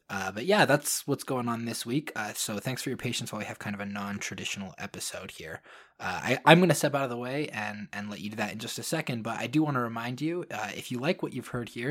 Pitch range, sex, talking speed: 105-135 Hz, male, 295 wpm